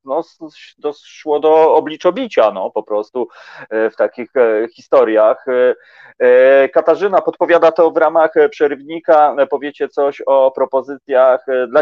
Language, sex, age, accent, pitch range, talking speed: Polish, male, 30-49, native, 115-150 Hz, 105 wpm